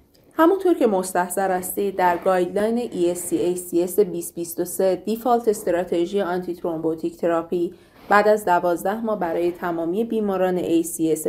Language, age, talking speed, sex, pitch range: Persian, 30-49, 105 wpm, female, 175-215 Hz